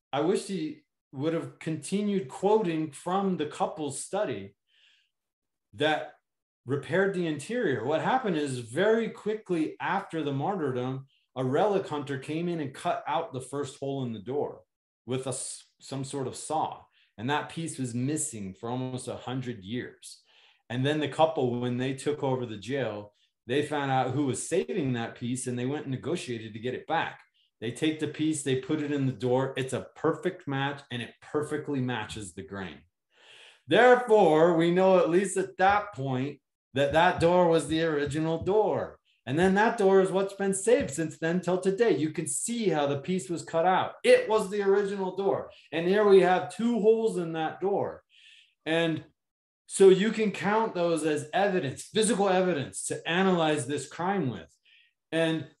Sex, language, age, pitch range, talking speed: male, English, 30-49, 130-190 Hz, 180 wpm